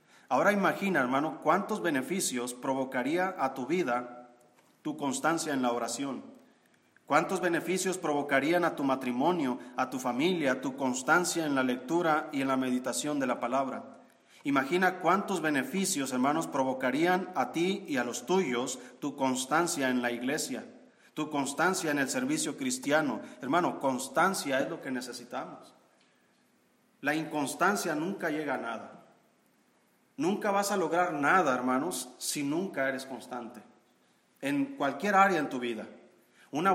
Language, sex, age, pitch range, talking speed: Spanish, male, 40-59, 125-165 Hz, 140 wpm